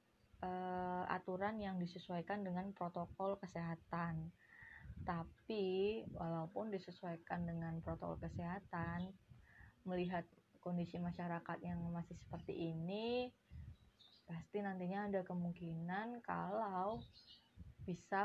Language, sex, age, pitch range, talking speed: Indonesian, female, 20-39, 165-190 Hz, 80 wpm